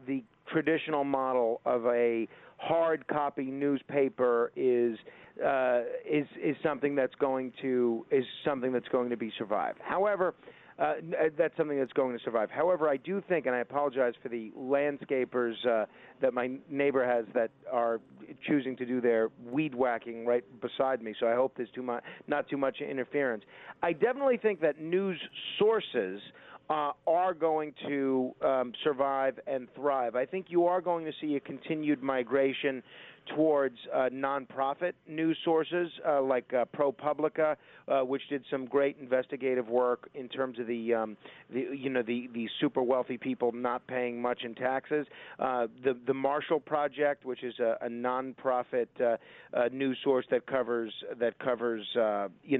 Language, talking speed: English, 165 wpm